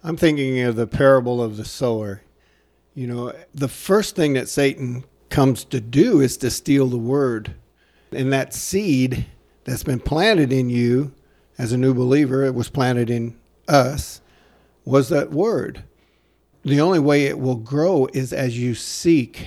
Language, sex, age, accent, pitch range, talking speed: English, male, 50-69, American, 110-140 Hz, 165 wpm